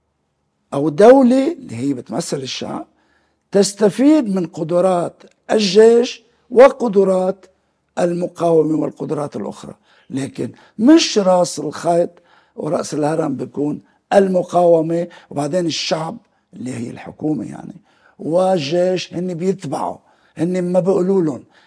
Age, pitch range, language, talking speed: 60-79, 140-210 Hz, English, 95 wpm